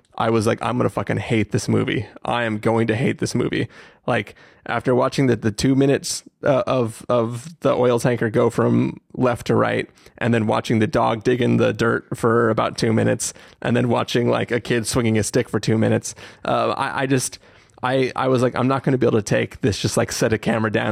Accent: American